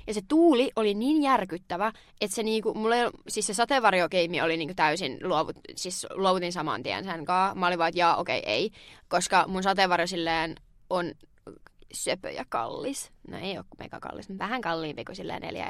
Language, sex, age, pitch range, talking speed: Finnish, female, 20-39, 180-255 Hz, 180 wpm